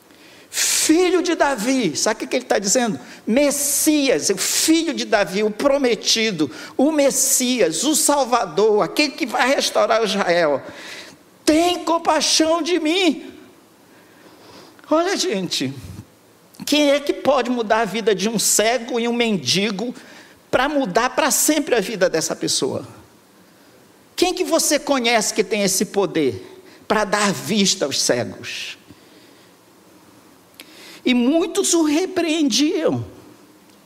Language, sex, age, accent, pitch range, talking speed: Portuguese, male, 50-69, Brazilian, 200-300 Hz, 120 wpm